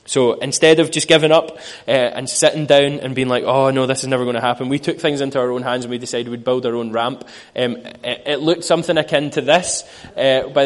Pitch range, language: 125-145 Hz, English